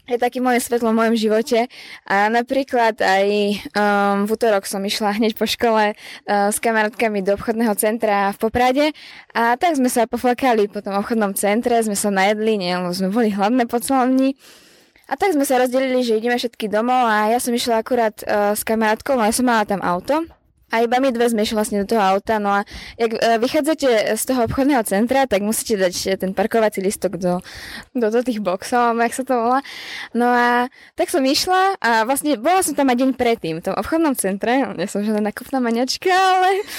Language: Slovak